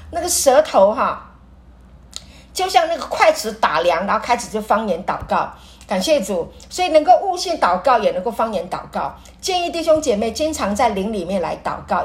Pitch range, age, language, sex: 215-330 Hz, 50-69, Chinese, female